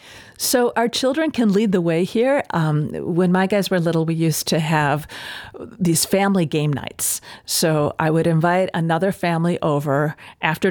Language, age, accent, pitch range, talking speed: English, 50-69, American, 160-200 Hz, 170 wpm